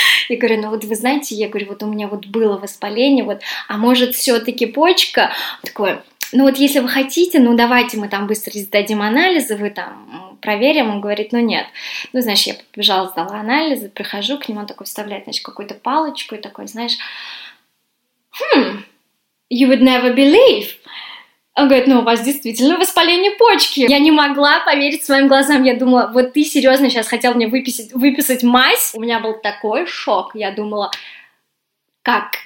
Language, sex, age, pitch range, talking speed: Russian, female, 20-39, 210-270 Hz, 175 wpm